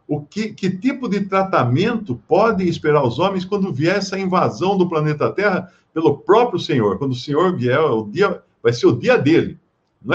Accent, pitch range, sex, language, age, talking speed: Brazilian, 115-165 Hz, male, Portuguese, 60-79, 190 wpm